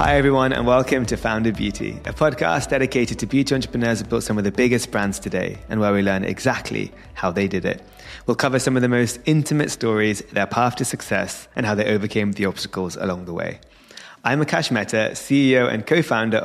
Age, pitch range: 20-39, 105-145 Hz